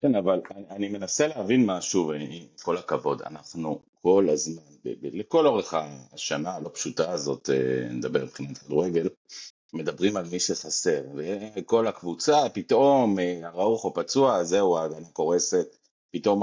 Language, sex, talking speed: Hebrew, male, 145 wpm